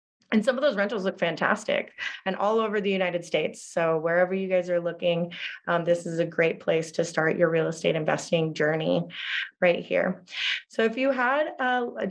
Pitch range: 175-200 Hz